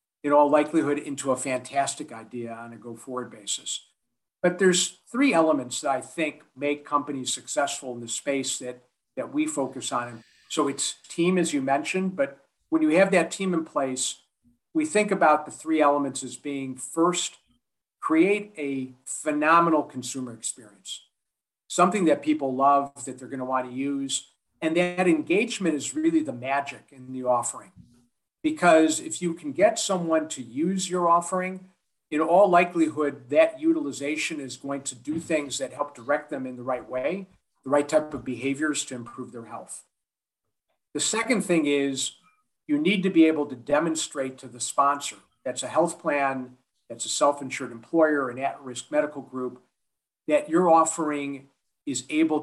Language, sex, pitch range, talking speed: English, male, 130-170 Hz, 165 wpm